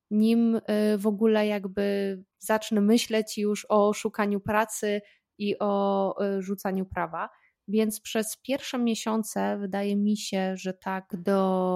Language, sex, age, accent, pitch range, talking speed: Polish, female, 20-39, native, 175-205 Hz, 125 wpm